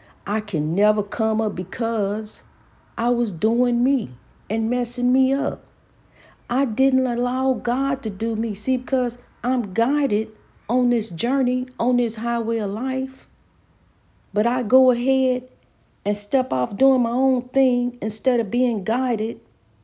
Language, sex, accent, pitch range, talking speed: English, female, American, 175-235 Hz, 145 wpm